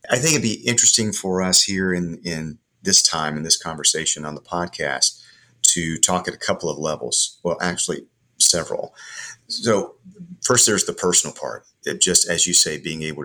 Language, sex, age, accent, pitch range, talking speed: English, male, 40-59, American, 75-95 Hz, 185 wpm